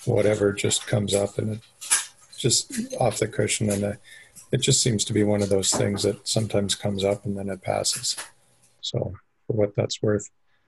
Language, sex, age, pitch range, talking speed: English, male, 50-69, 100-115 Hz, 185 wpm